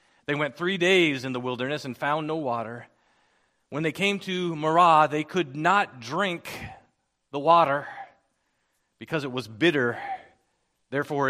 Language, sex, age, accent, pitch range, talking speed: English, male, 40-59, American, 125-170 Hz, 145 wpm